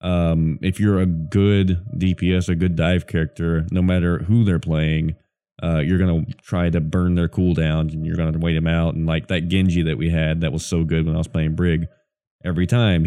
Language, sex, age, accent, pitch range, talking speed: English, male, 20-39, American, 80-90 Hz, 225 wpm